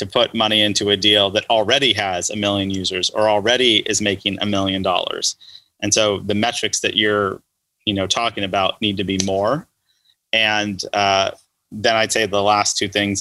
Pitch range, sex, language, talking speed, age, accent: 100-110 Hz, male, English, 190 wpm, 30-49, American